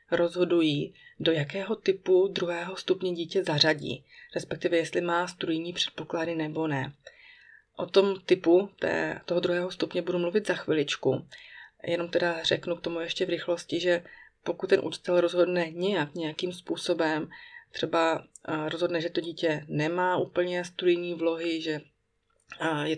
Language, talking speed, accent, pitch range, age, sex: Czech, 140 wpm, native, 160-180 Hz, 30-49, female